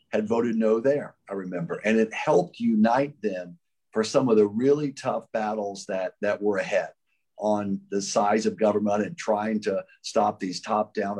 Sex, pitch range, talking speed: male, 105-135 Hz, 175 wpm